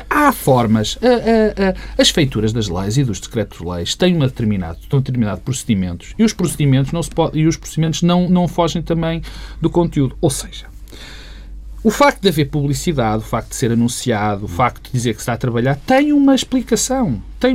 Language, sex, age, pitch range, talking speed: Portuguese, male, 40-59, 120-175 Hz, 200 wpm